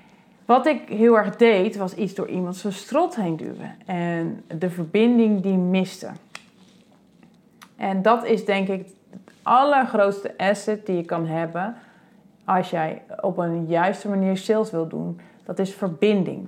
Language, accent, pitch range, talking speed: Dutch, Dutch, 175-220 Hz, 155 wpm